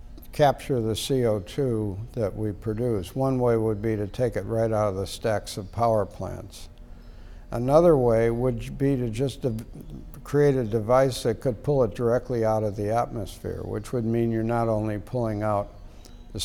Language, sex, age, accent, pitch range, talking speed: English, male, 60-79, American, 100-120 Hz, 175 wpm